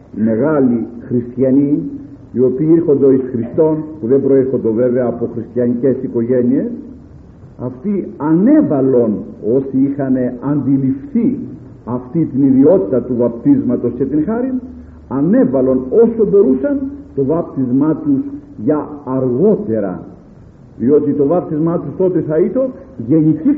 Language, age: Greek, 50-69